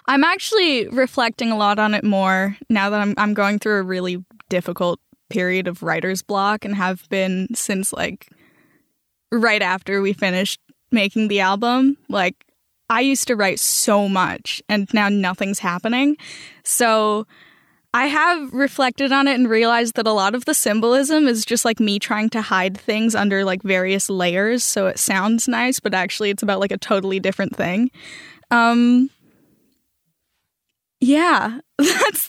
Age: 10-29